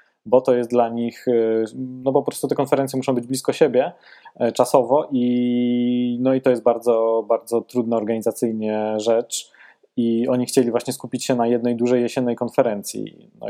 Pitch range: 115-130 Hz